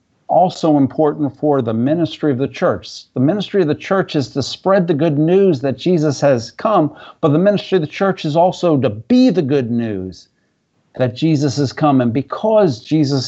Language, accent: English, American